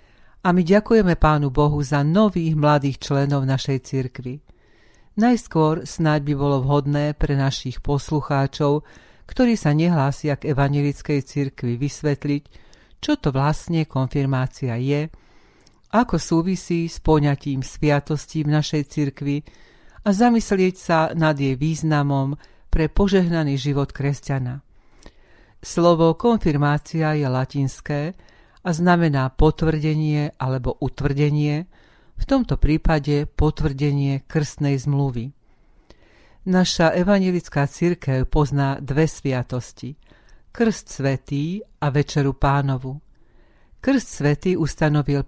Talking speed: 105 wpm